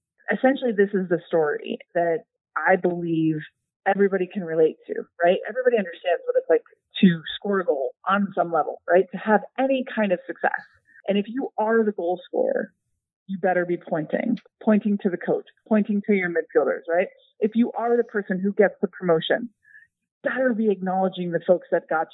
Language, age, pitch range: English, 30-49, 175-215 Hz